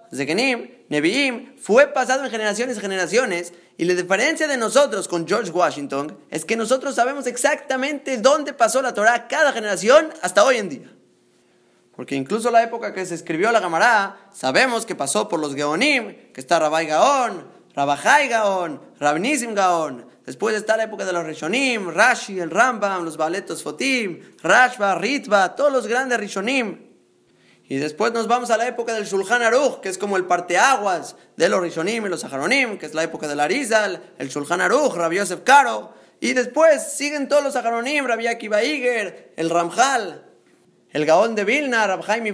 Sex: male